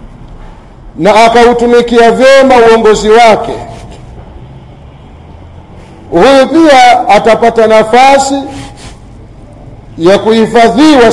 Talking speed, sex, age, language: 60 wpm, male, 50-69, Swahili